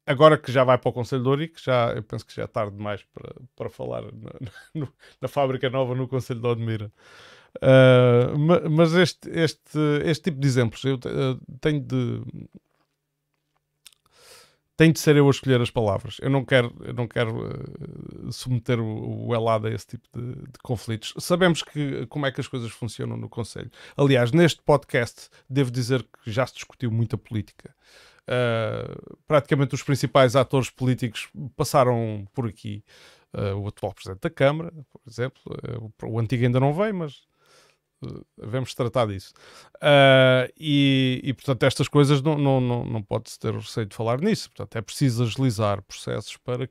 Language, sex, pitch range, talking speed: Portuguese, male, 120-145 Hz, 170 wpm